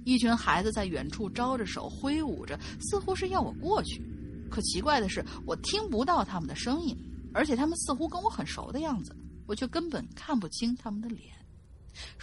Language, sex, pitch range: Chinese, female, 215-285 Hz